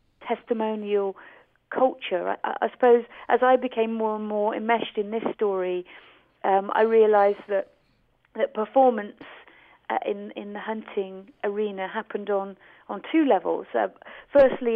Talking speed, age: 140 wpm, 40-59